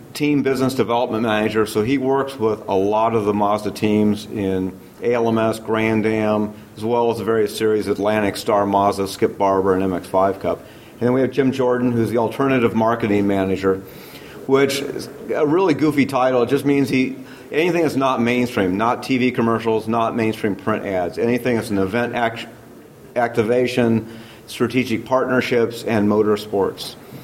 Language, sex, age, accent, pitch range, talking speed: English, male, 40-59, American, 110-125 Hz, 165 wpm